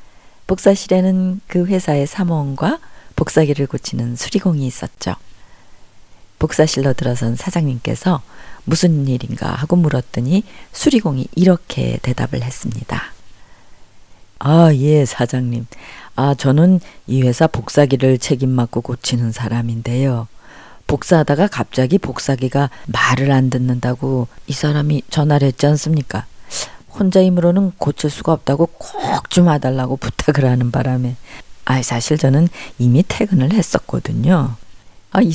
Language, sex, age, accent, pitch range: Korean, female, 40-59, native, 120-160 Hz